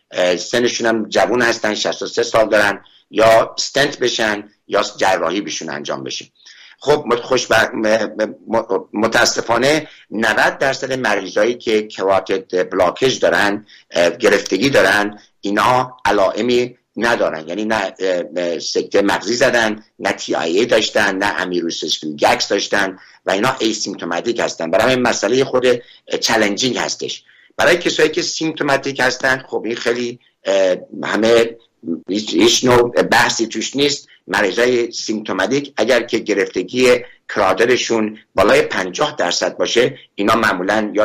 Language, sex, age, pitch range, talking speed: Persian, male, 60-79, 105-125 Hz, 115 wpm